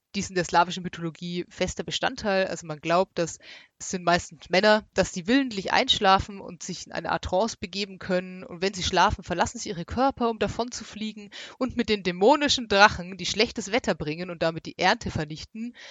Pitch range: 175-205 Hz